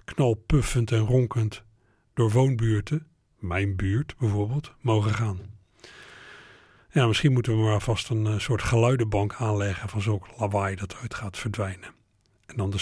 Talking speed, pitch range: 140 wpm, 105-130 Hz